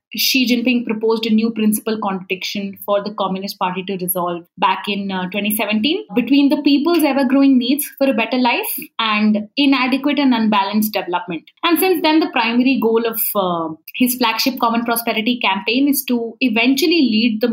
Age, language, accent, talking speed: 20-39, English, Indian, 170 wpm